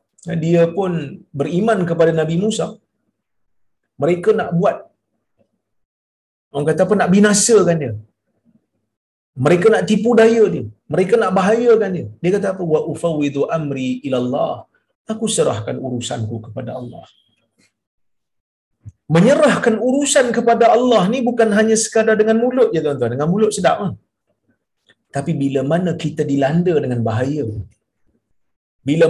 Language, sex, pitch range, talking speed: Malayalam, male, 130-200 Hz, 125 wpm